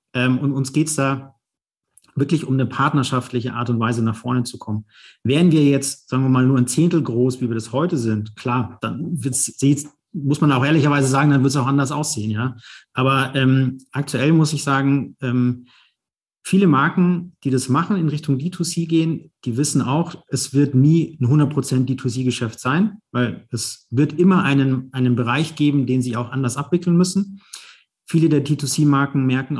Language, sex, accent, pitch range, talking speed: German, male, German, 130-155 Hz, 180 wpm